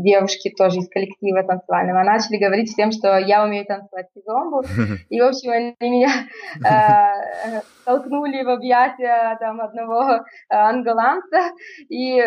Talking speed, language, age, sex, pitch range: 130 wpm, Russian, 20-39, female, 200-240 Hz